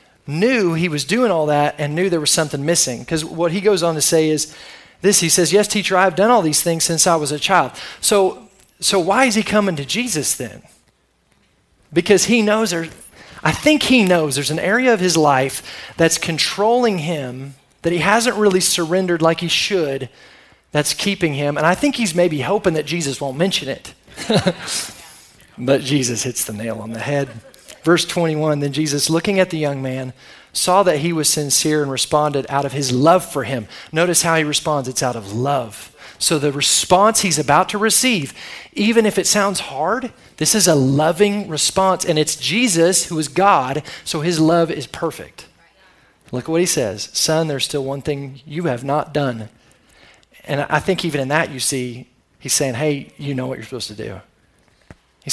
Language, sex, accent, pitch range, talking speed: English, male, American, 140-185 Hz, 195 wpm